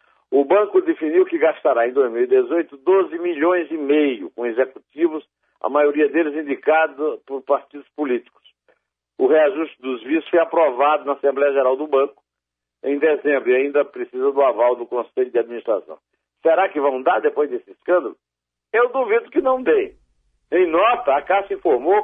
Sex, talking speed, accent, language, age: male, 160 wpm, Brazilian, Portuguese, 60-79